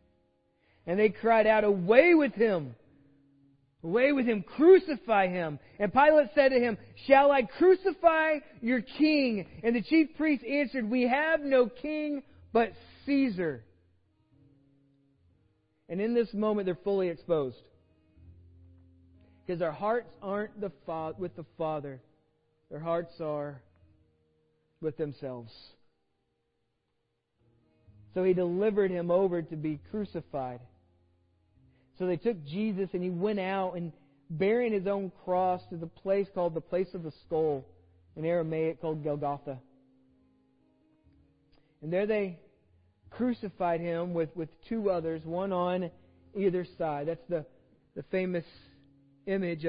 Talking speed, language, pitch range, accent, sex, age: 130 wpm, English, 140-205 Hz, American, male, 40-59